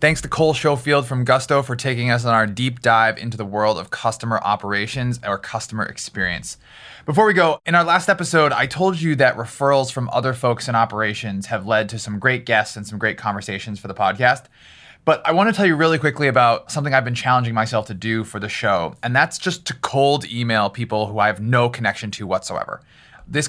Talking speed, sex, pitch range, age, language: 220 wpm, male, 115-155 Hz, 20-39, English